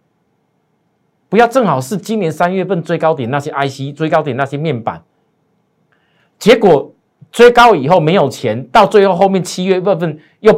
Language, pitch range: Chinese, 145-215 Hz